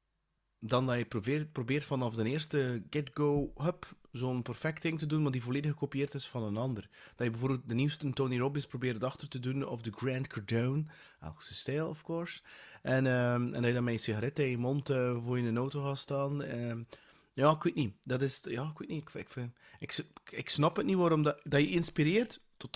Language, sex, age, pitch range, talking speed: Dutch, male, 30-49, 120-150 Hz, 230 wpm